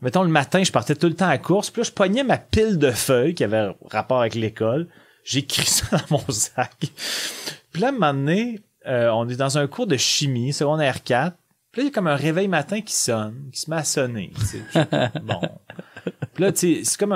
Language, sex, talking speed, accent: French, male, 240 wpm, Canadian